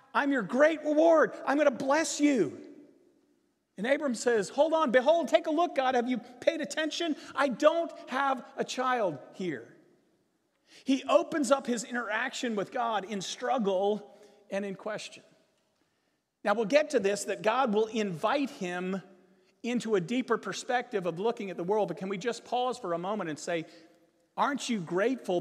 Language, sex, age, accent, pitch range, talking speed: English, male, 40-59, American, 210-275 Hz, 170 wpm